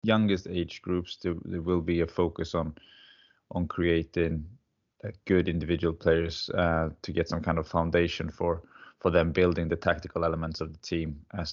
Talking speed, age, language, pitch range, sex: 165 wpm, 20-39, English, 80-90 Hz, male